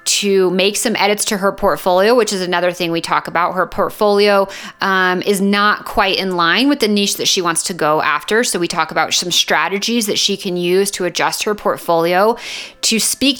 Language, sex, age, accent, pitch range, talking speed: English, female, 30-49, American, 175-215 Hz, 210 wpm